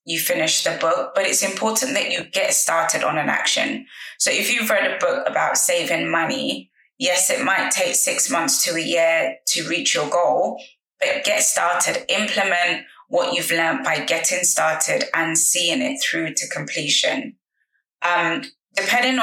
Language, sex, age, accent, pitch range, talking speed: English, female, 20-39, British, 170-265 Hz, 170 wpm